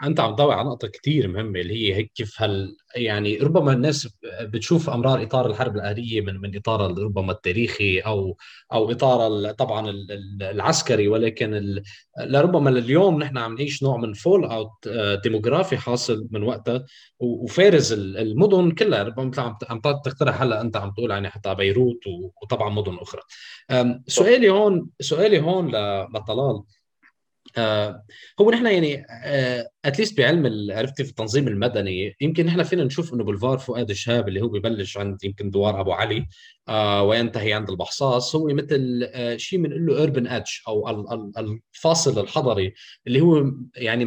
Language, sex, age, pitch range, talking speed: Arabic, male, 20-39, 105-140 Hz, 145 wpm